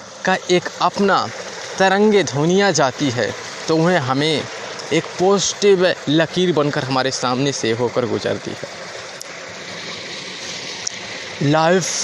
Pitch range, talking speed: 140-180 Hz, 105 wpm